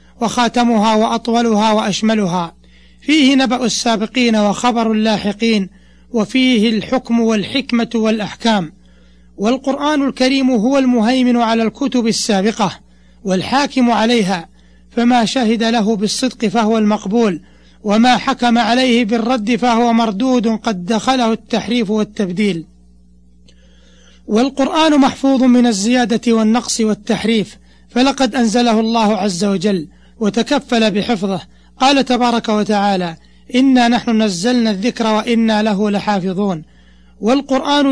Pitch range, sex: 210-245 Hz, male